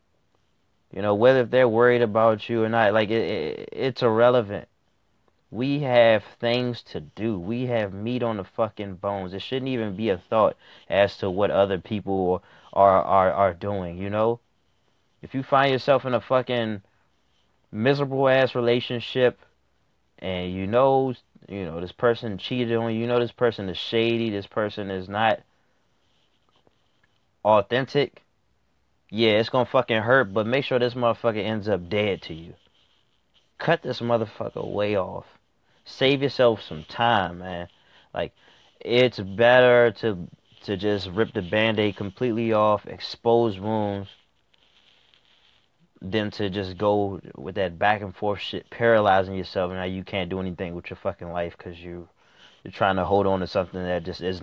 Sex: male